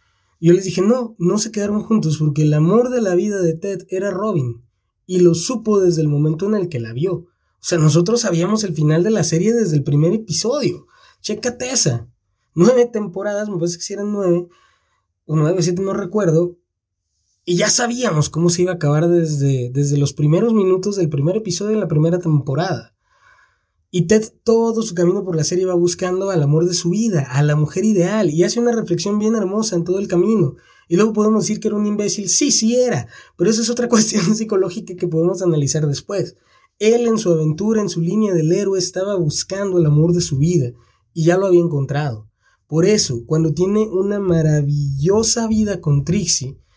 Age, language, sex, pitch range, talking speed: 20-39, Spanish, male, 155-205 Hz, 205 wpm